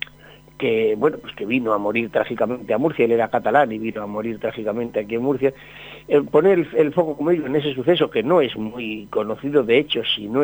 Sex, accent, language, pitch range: male, Spanish, Spanish, 120-155 Hz